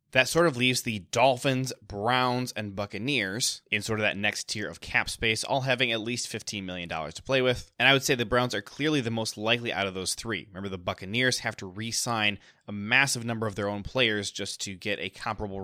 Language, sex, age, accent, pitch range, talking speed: English, male, 20-39, American, 105-130 Hz, 230 wpm